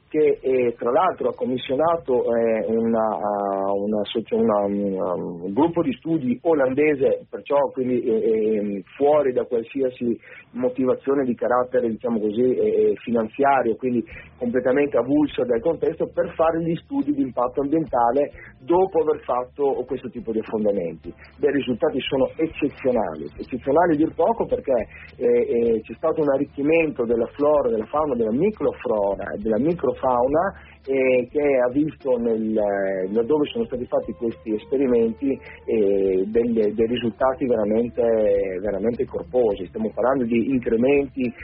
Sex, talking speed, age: male, 125 wpm, 40-59